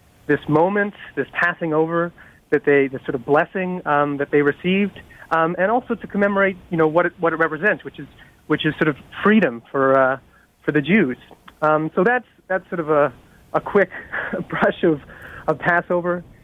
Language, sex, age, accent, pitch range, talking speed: English, male, 30-49, American, 150-185 Hz, 190 wpm